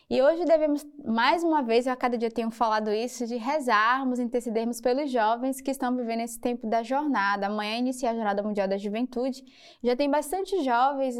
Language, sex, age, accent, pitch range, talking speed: Portuguese, female, 20-39, Brazilian, 220-270 Hz, 195 wpm